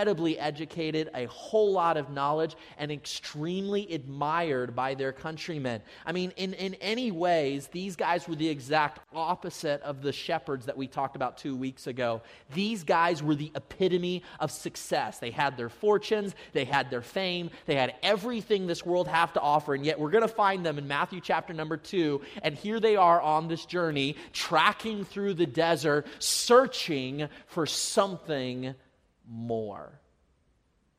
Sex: male